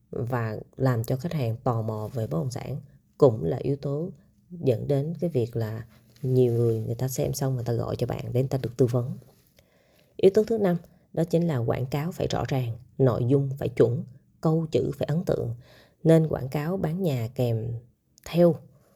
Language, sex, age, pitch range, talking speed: Vietnamese, female, 20-39, 120-160 Hz, 205 wpm